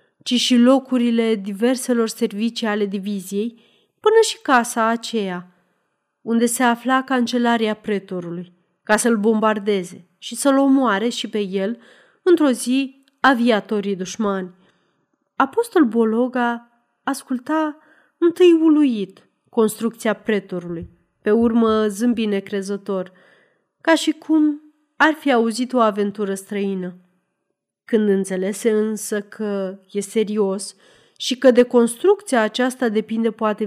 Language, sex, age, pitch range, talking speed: Romanian, female, 30-49, 200-260 Hz, 110 wpm